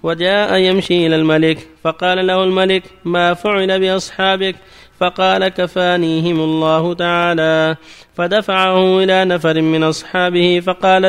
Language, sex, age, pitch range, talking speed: Arabic, male, 30-49, 160-190 Hz, 110 wpm